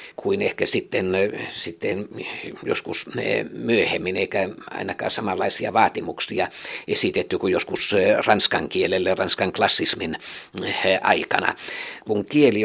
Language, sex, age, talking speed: Finnish, male, 60-79, 95 wpm